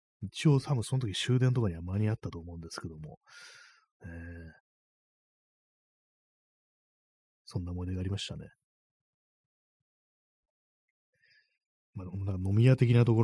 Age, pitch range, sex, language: 30-49, 90-125 Hz, male, Japanese